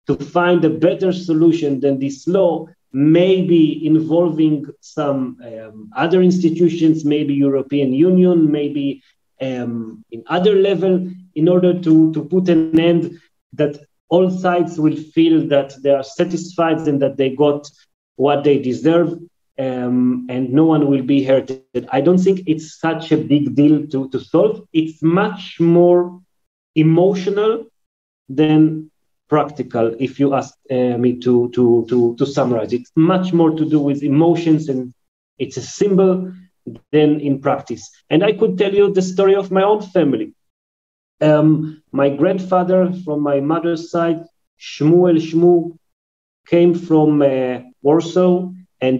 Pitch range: 140-175 Hz